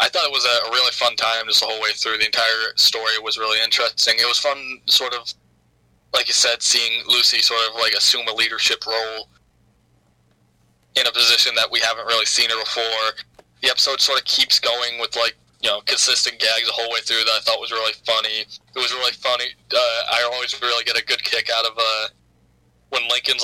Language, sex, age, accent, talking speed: English, male, 20-39, American, 220 wpm